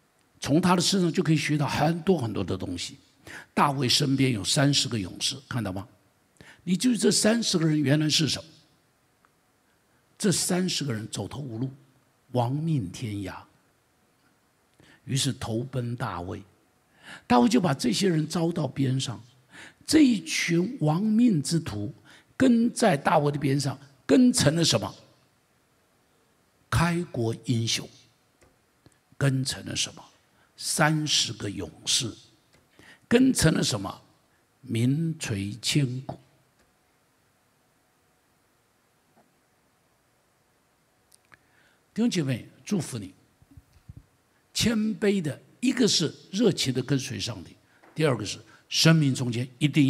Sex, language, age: male, Chinese, 60-79